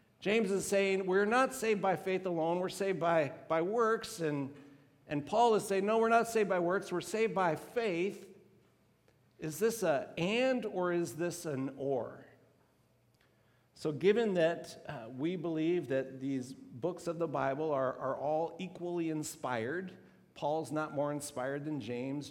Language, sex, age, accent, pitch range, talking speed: English, male, 50-69, American, 135-170 Hz, 165 wpm